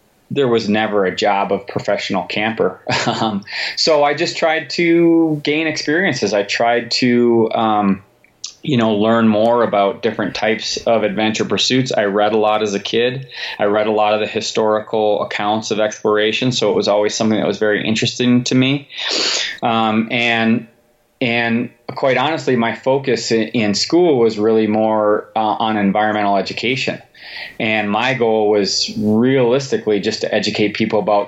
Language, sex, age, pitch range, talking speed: English, male, 20-39, 105-120 Hz, 160 wpm